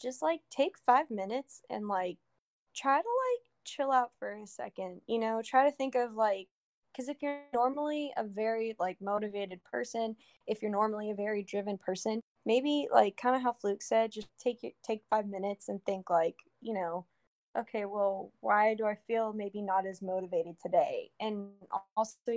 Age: 10-29